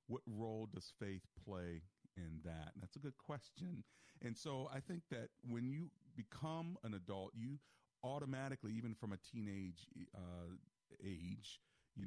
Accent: American